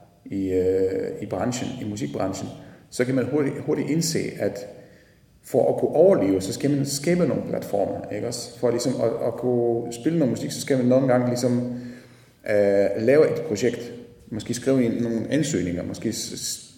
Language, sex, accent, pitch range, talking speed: Danish, male, native, 95-125 Hz, 175 wpm